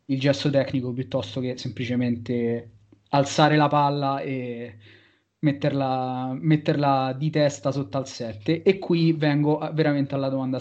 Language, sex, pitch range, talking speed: Italian, male, 130-150 Hz, 130 wpm